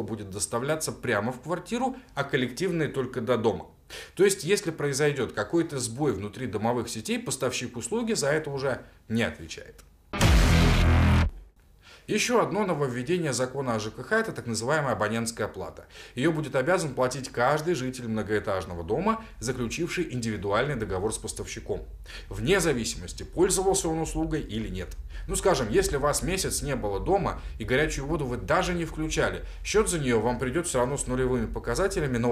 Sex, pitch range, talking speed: male, 110-155 Hz, 155 wpm